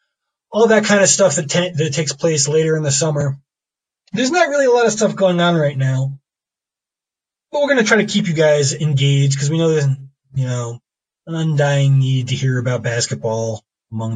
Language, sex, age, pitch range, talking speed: English, male, 20-39, 135-180 Hz, 205 wpm